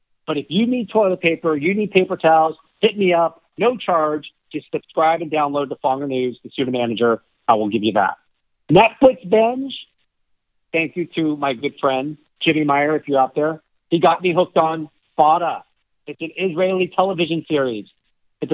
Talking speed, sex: 180 wpm, male